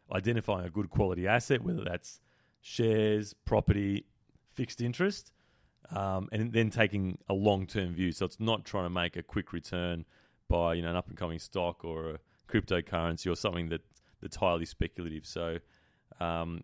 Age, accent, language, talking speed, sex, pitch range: 30-49, Australian, English, 160 wpm, male, 85-100 Hz